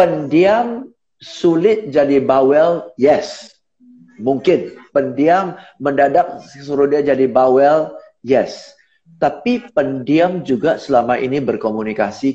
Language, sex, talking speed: Indonesian, male, 90 wpm